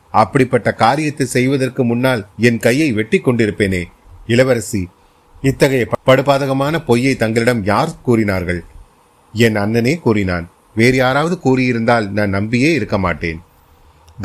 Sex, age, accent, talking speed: male, 30-49, native, 100 wpm